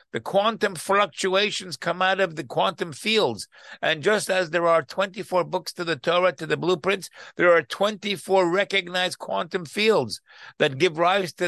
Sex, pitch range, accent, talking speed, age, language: male, 155-190 Hz, American, 165 wpm, 60-79, English